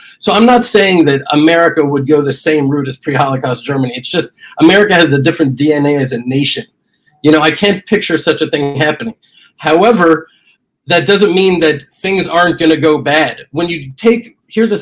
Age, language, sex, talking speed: 30-49, English, male, 200 wpm